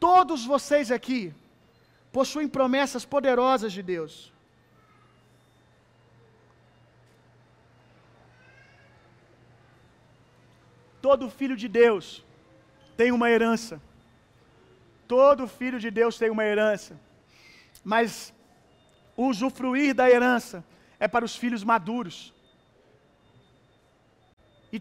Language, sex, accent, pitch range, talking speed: Gujarati, male, Brazilian, 215-275 Hz, 75 wpm